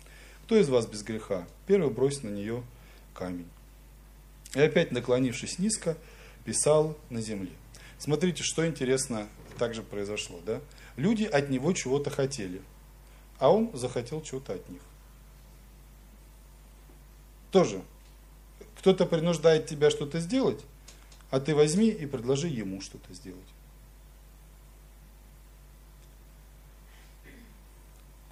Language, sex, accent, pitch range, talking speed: Russian, male, native, 105-150 Hz, 105 wpm